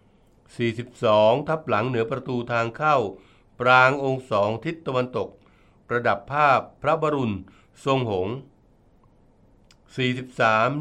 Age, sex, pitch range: 60-79, male, 105-130 Hz